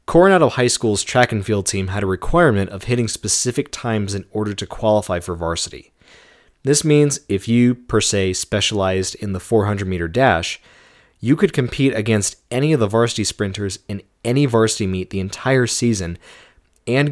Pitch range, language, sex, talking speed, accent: 95-120 Hz, English, male, 170 wpm, American